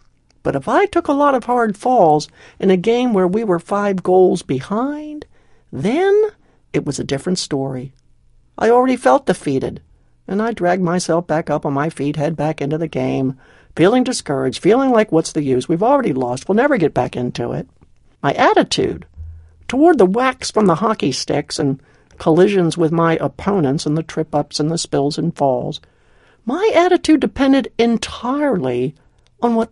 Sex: male